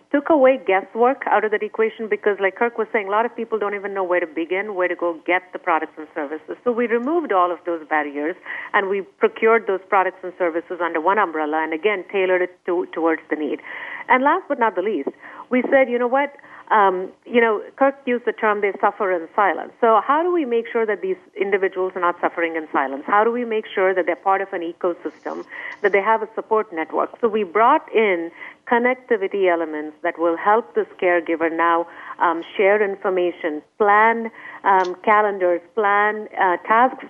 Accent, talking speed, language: Indian, 205 wpm, English